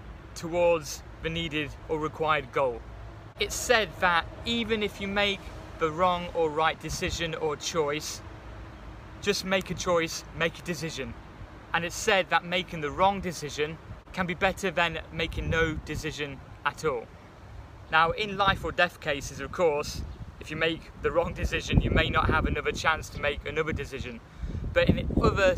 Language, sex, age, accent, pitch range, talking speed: English, male, 20-39, British, 140-175 Hz, 165 wpm